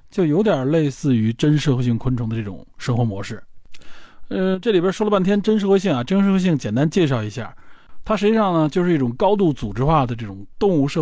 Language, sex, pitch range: Chinese, male, 120-170 Hz